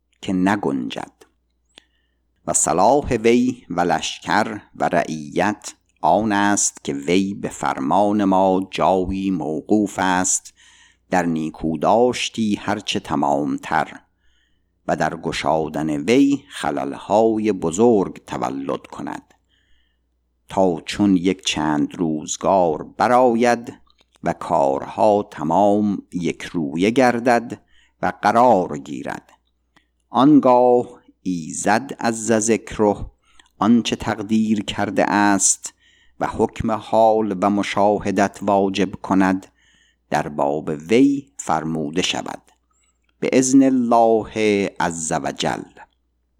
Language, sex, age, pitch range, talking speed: Persian, male, 50-69, 90-115 Hz, 95 wpm